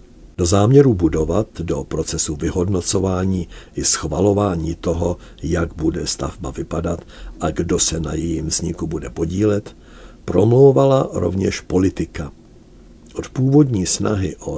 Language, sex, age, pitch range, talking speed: Czech, male, 60-79, 85-110 Hz, 115 wpm